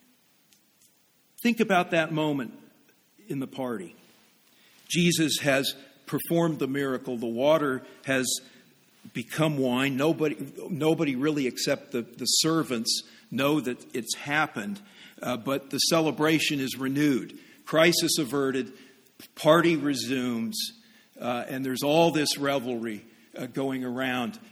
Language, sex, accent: English, male, American